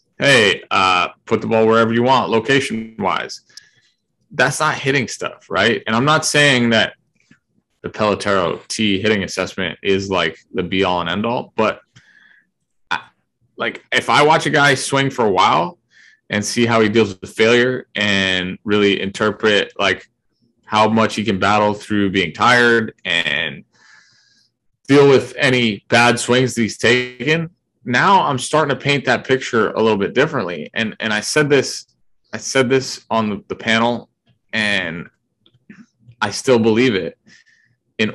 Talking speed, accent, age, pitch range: 160 wpm, American, 20-39, 100-125 Hz